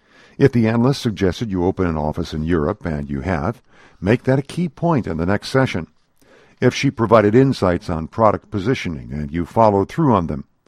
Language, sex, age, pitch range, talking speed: English, male, 60-79, 85-125 Hz, 195 wpm